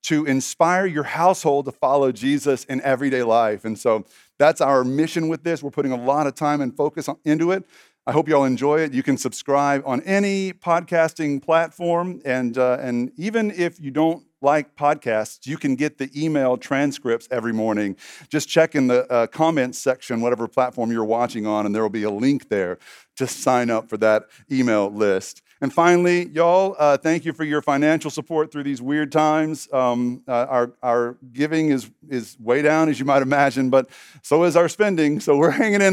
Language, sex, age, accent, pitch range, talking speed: English, male, 40-59, American, 120-155 Hz, 200 wpm